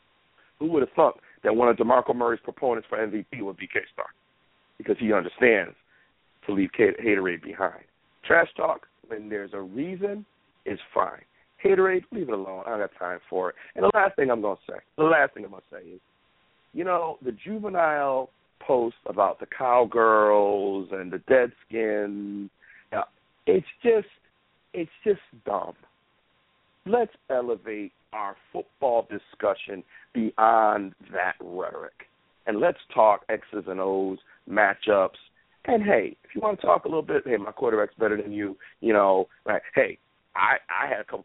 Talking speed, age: 170 wpm, 50-69